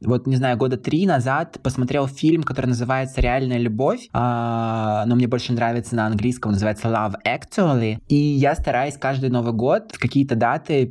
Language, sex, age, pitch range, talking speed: Russian, male, 20-39, 120-145 Hz, 165 wpm